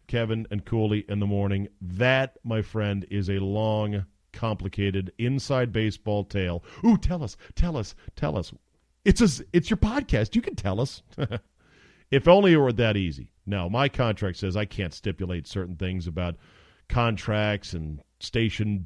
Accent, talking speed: American, 160 wpm